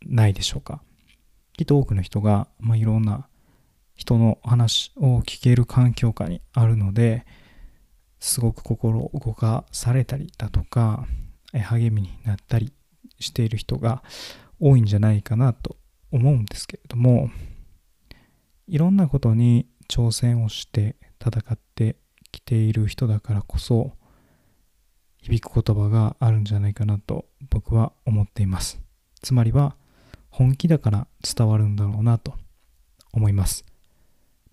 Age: 20-39